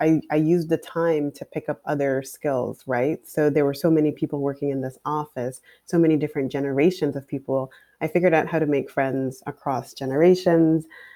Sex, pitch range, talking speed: female, 140-160 Hz, 195 wpm